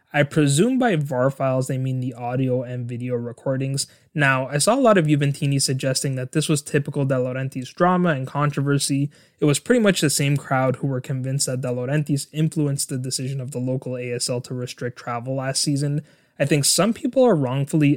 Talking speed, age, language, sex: 200 wpm, 20-39, English, male